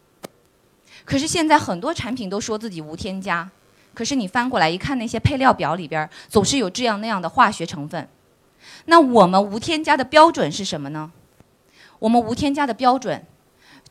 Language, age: Chinese, 20-39